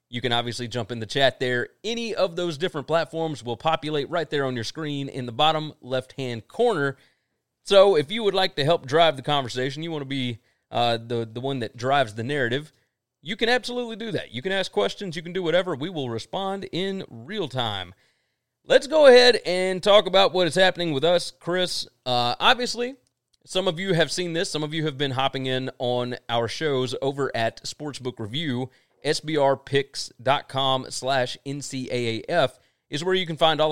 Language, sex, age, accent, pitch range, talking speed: English, male, 30-49, American, 125-180 Hz, 195 wpm